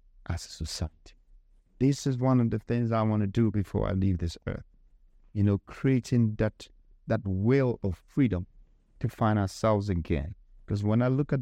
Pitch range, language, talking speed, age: 85-105 Hz, English, 185 wpm, 50-69